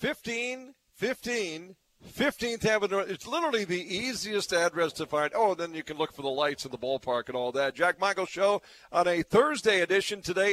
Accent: American